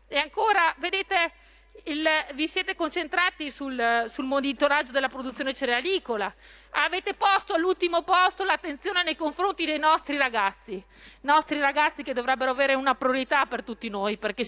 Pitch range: 260-340 Hz